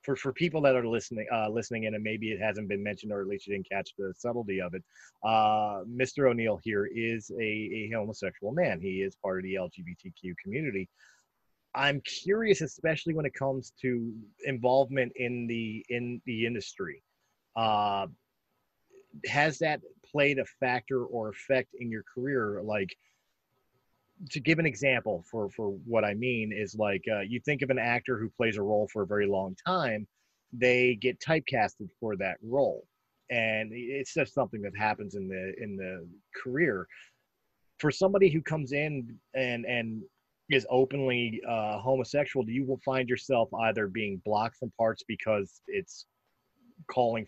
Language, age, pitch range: English, 30-49, 105-135 Hz